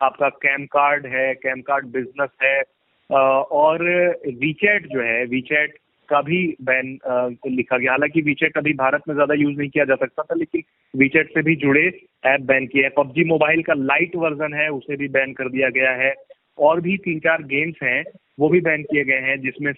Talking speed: 205 wpm